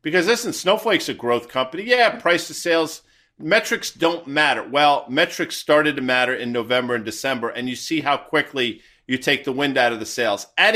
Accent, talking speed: American, 200 wpm